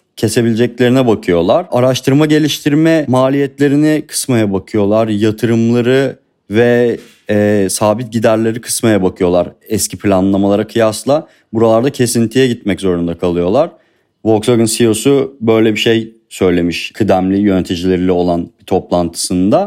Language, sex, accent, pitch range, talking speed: Turkish, male, native, 110-135 Hz, 100 wpm